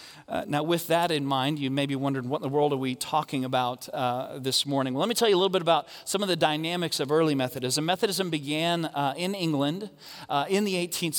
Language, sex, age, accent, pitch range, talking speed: English, male, 40-59, American, 150-195 Hz, 240 wpm